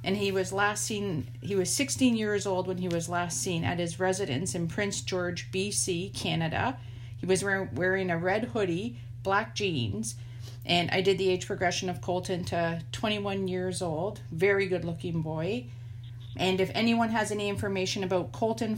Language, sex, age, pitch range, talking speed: English, female, 40-59, 120-190 Hz, 175 wpm